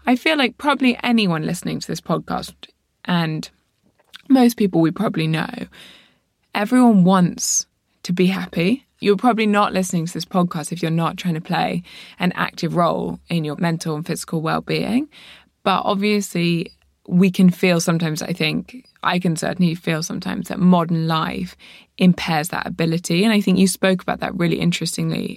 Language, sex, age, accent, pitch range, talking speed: English, female, 20-39, British, 165-190 Hz, 165 wpm